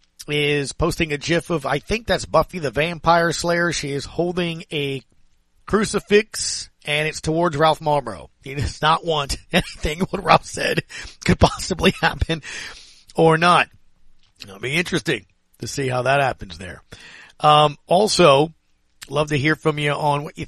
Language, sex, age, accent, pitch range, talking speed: English, male, 40-59, American, 135-170 Hz, 160 wpm